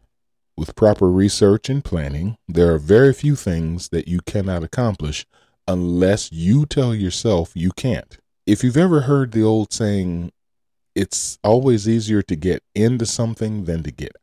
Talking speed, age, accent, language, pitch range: 155 wpm, 40-59, American, English, 80-115 Hz